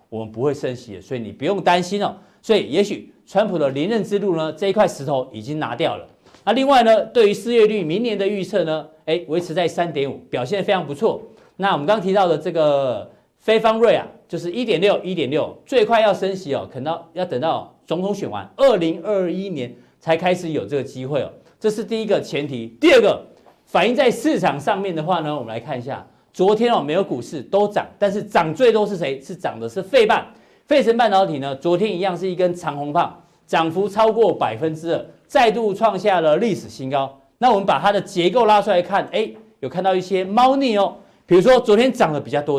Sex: male